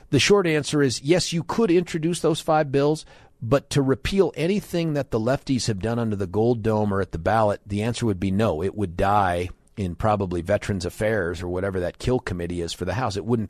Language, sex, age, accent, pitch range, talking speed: English, male, 40-59, American, 95-145 Hz, 225 wpm